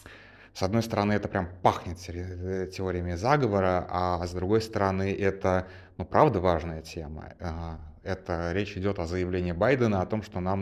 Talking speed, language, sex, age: 155 wpm, Russian, male, 30-49